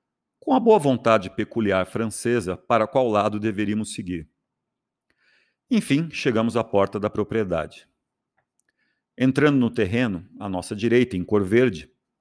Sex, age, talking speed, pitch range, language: male, 50-69, 130 wpm, 100-130 Hz, Portuguese